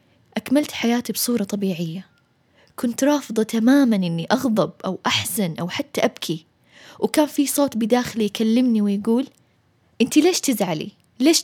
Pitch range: 200-265 Hz